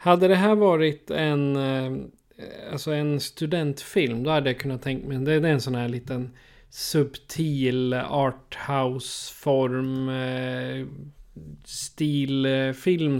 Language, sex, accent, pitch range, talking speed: Swedish, male, native, 130-155 Hz, 105 wpm